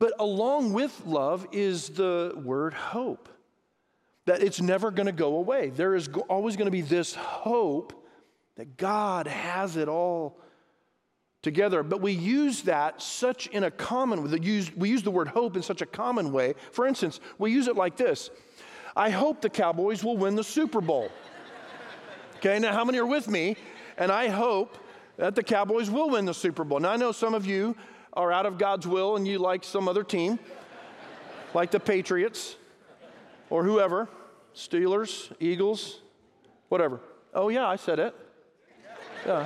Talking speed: 170 wpm